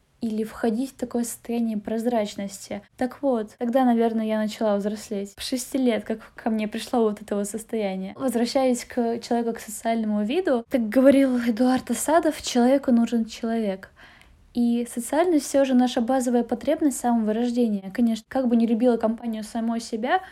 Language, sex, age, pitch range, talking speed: Russian, female, 10-29, 225-265 Hz, 160 wpm